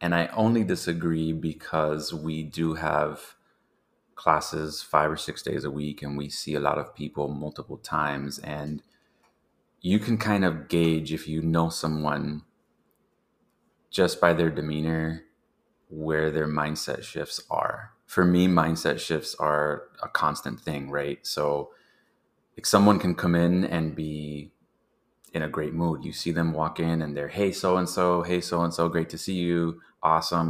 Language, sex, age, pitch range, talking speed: English, male, 30-49, 75-85 Hz, 155 wpm